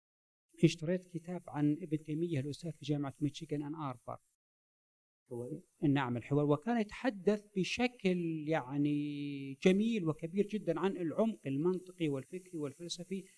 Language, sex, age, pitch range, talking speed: Arabic, male, 50-69, 145-185 Hz, 110 wpm